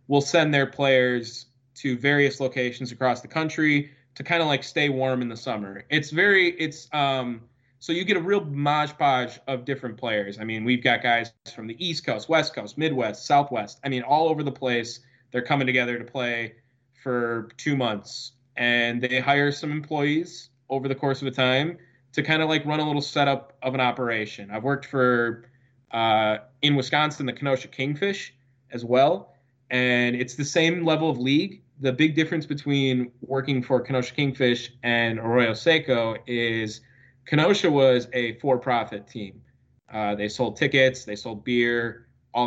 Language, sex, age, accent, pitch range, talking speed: English, male, 20-39, American, 120-140 Hz, 175 wpm